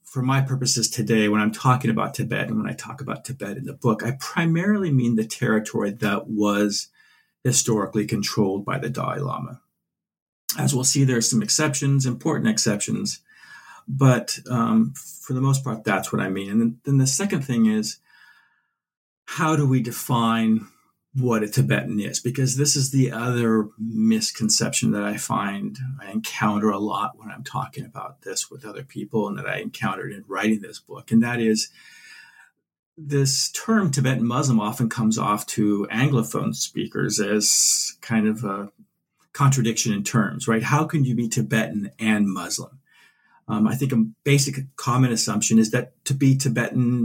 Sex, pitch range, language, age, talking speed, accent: male, 110-135 Hz, English, 50-69, 170 wpm, American